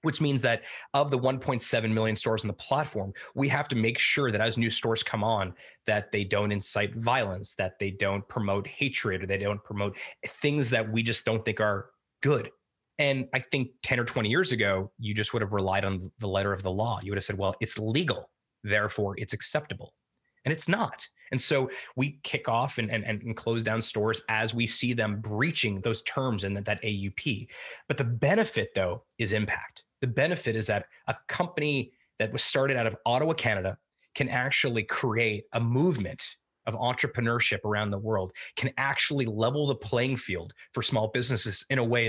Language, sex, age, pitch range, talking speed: English, male, 20-39, 105-130 Hz, 200 wpm